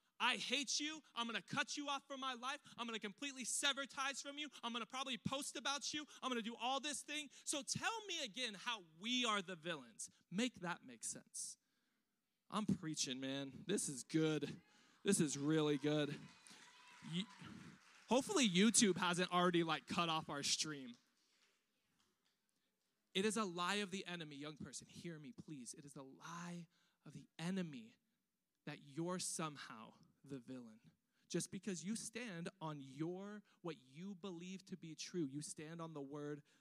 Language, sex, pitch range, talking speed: English, male, 155-235 Hz, 175 wpm